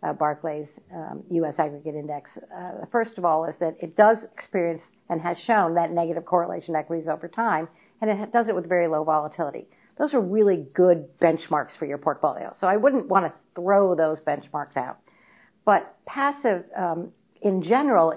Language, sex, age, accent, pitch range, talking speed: English, female, 50-69, American, 160-210 Hz, 180 wpm